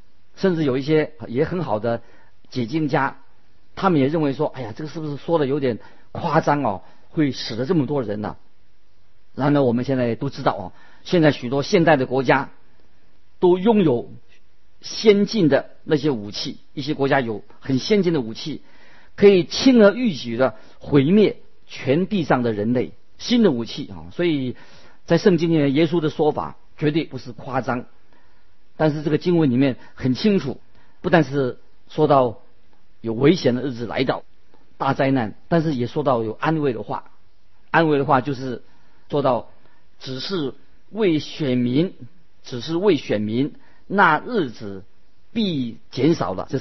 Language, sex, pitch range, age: Chinese, male, 115-155 Hz, 50-69